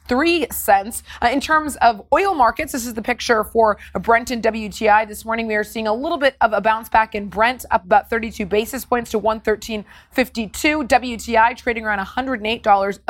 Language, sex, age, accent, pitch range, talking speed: English, female, 20-39, American, 215-265 Hz, 190 wpm